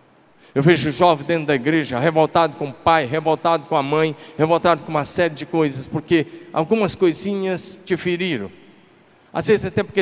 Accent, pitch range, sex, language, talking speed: Brazilian, 140-170 Hz, male, Portuguese, 175 wpm